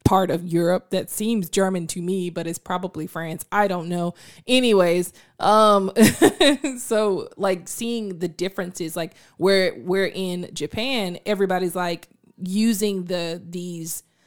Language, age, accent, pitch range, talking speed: English, 20-39, American, 175-215 Hz, 135 wpm